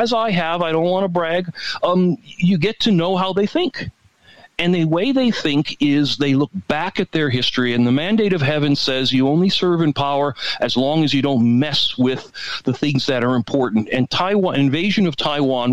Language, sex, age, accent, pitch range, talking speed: English, male, 40-59, American, 130-180 Hz, 215 wpm